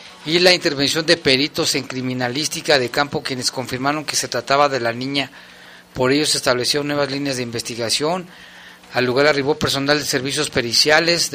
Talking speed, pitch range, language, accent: 170 wpm, 125-145 Hz, Spanish, Mexican